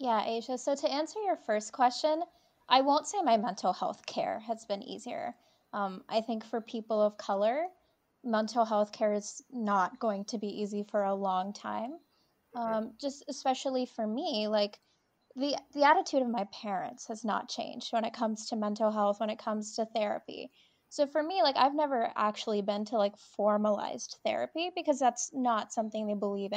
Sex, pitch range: female, 210-255 Hz